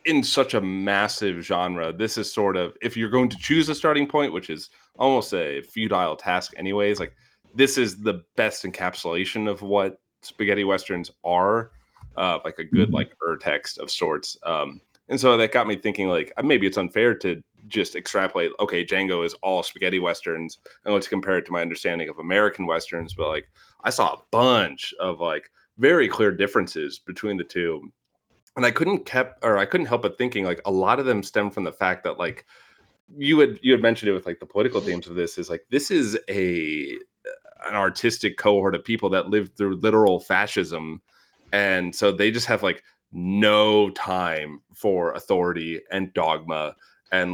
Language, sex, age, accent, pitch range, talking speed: English, male, 30-49, American, 90-115 Hz, 190 wpm